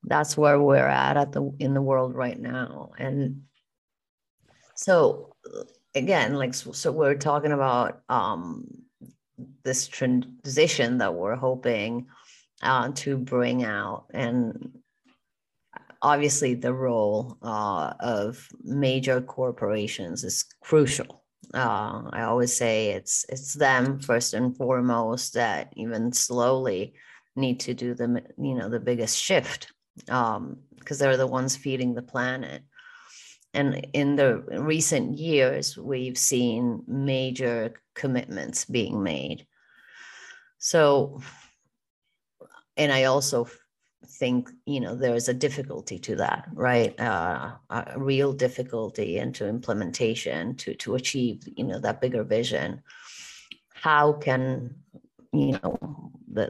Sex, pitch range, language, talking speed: female, 125-140 Hz, English, 120 wpm